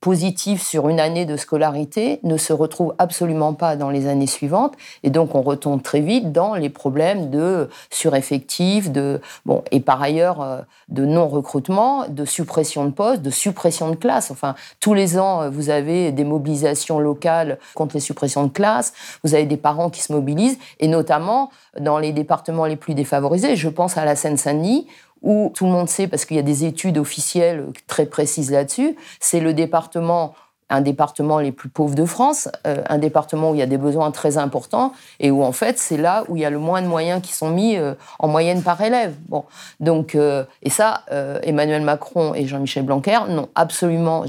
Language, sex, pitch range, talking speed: French, female, 145-175 Hz, 195 wpm